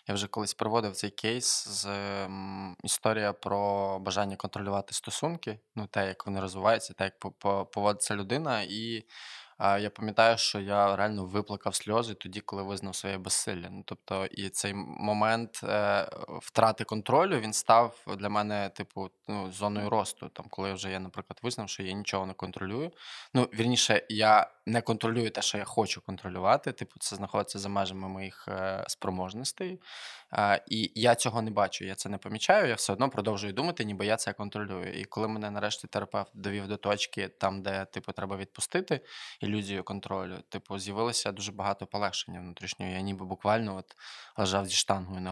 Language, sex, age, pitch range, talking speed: Ukrainian, male, 20-39, 95-110 Hz, 170 wpm